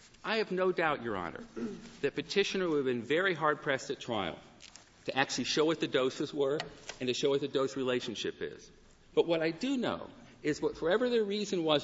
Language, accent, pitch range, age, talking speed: English, American, 130-190 Hz, 50-69, 210 wpm